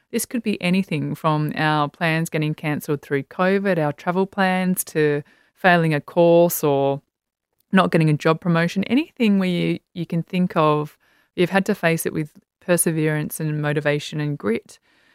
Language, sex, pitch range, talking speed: English, female, 155-195 Hz, 165 wpm